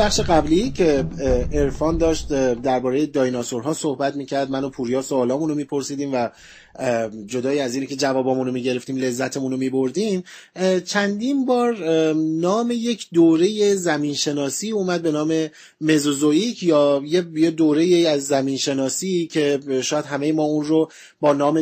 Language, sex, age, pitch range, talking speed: Persian, male, 30-49, 140-185 Hz, 135 wpm